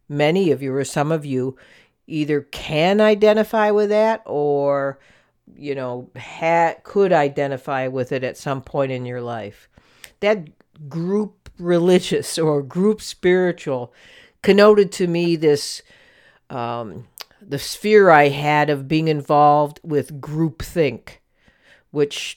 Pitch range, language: 135-175 Hz, English